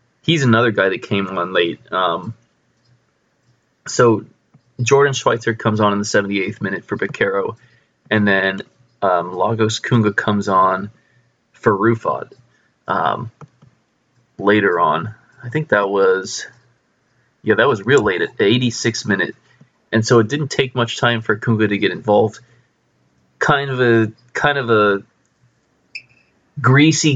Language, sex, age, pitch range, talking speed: English, male, 20-39, 105-120 Hz, 140 wpm